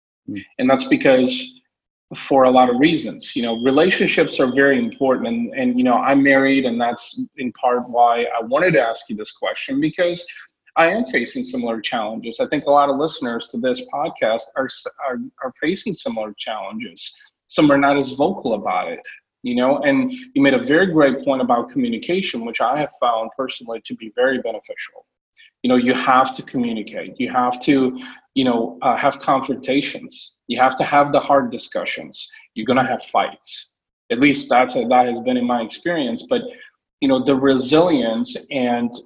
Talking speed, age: 185 wpm, 30-49